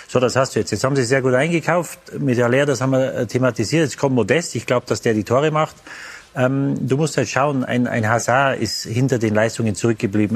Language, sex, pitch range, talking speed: German, male, 120-140 Hz, 235 wpm